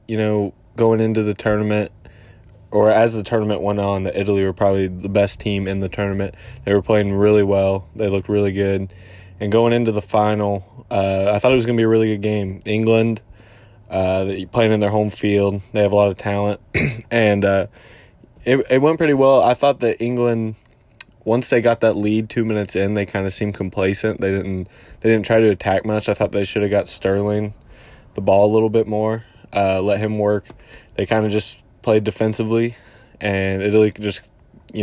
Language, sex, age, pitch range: English, male, 20-39, 95-110 Hz